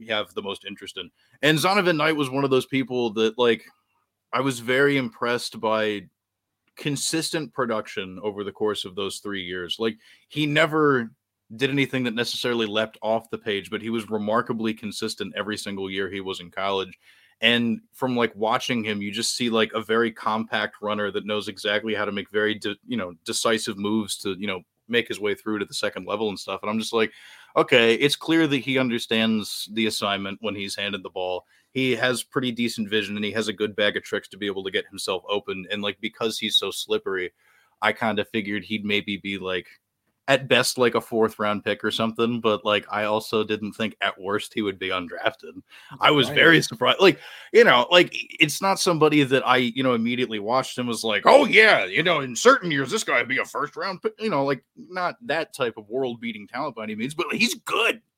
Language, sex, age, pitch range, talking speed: English, male, 20-39, 105-130 Hz, 215 wpm